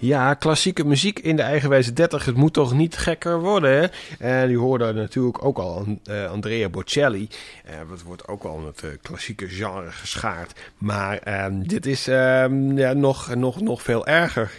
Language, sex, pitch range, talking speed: Dutch, male, 105-130 Hz, 185 wpm